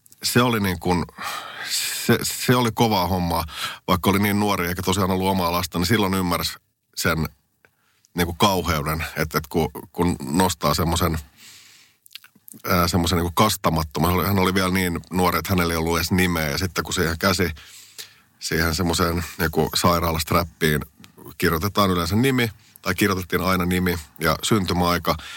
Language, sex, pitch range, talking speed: Finnish, male, 80-95 Hz, 150 wpm